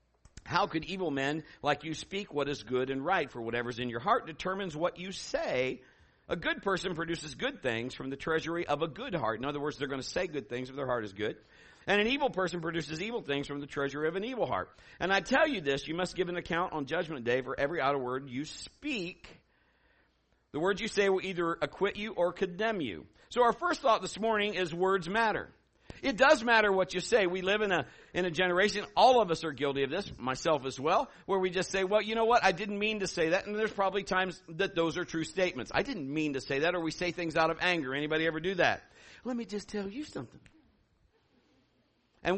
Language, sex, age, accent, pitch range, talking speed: English, male, 50-69, American, 150-205 Hz, 240 wpm